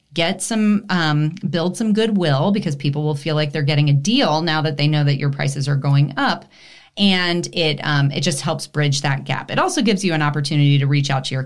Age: 30-49